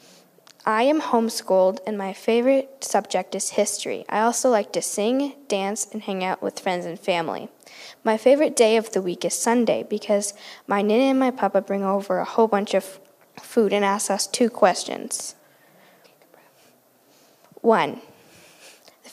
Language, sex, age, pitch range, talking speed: English, female, 10-29, 200-245 Hz, 155 wpm